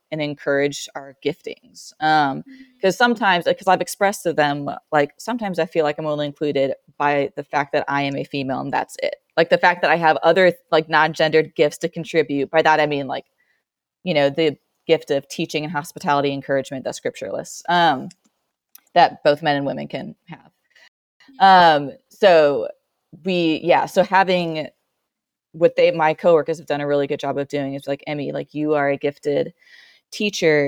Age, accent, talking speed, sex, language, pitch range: 20-39, American, 185 wpm, female, English, 145-175 Hz